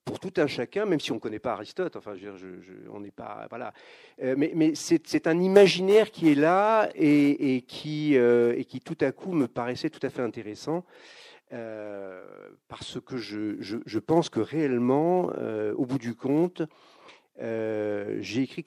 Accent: French